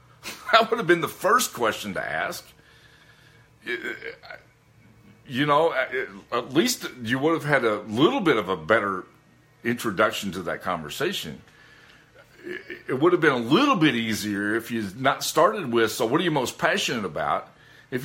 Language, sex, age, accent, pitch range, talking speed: English, male, 50-69, American, 115-165 Hz, 165 wpm